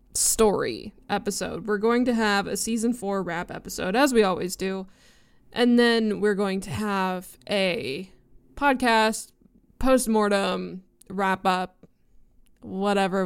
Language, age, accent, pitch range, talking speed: English, 20-39, American, 200-240 Hz, 120 wpm